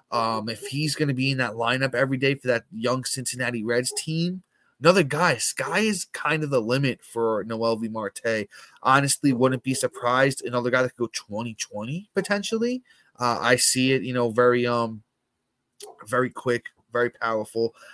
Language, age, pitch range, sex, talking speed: English, 20-39, 115-135 Hz, male, 175 wpm